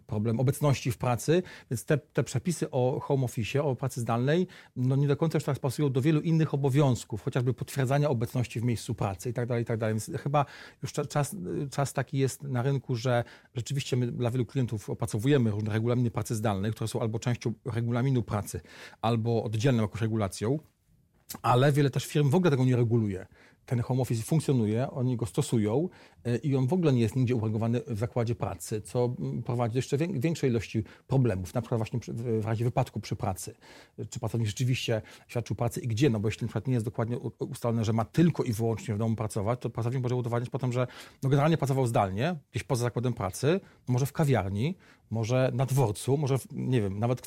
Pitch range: 115-140 Hz